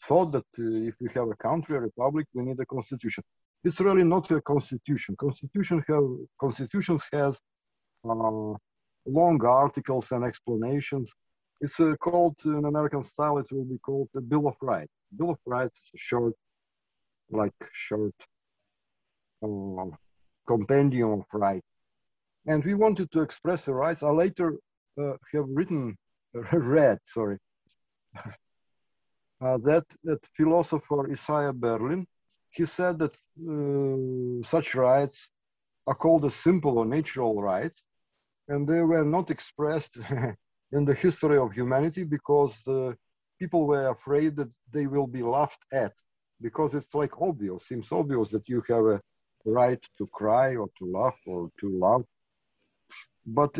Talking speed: 145 wpm